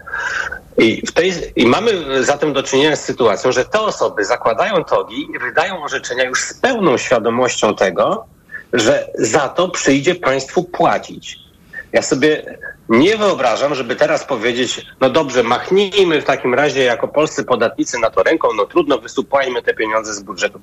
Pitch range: 120-180 Hz